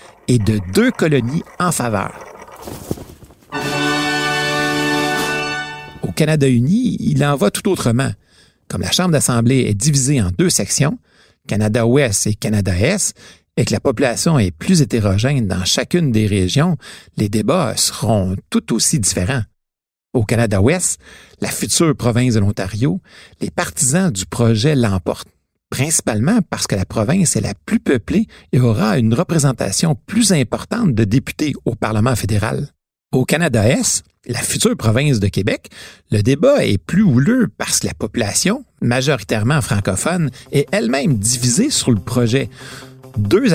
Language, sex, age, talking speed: French, male, 60-79, 135 wpm